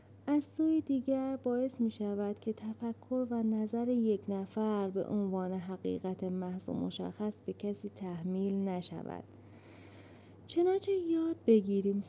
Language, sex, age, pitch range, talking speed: English, female, 30-49, 175-225 Hz, 120 wpm